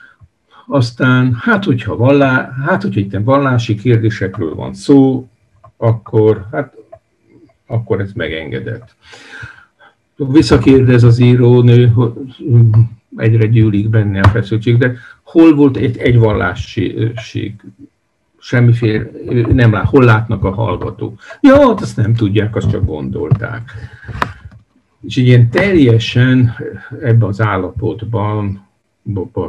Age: 50-69